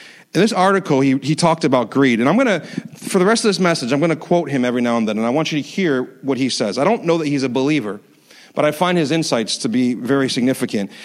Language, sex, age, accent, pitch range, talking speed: English, male, 40-59, American, 135-180 Hz, 280 wpm